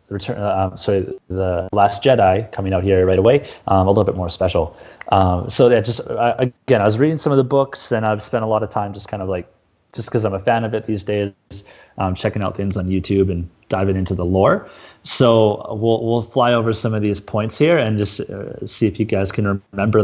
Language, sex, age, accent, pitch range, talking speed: English, male, 30-49, American, 95-115 Hz, 240 wpm